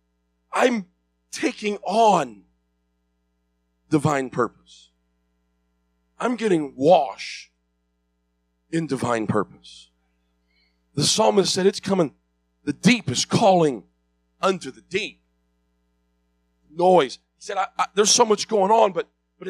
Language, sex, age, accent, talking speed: English, male, 40-59, American, 110 wpm